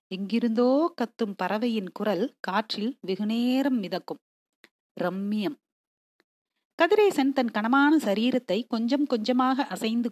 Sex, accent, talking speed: female, native, 85 wpm